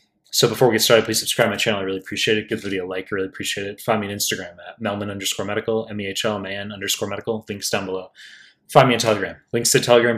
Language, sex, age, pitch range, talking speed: English, male, 20-39, 105-125 Hz, 260 wpm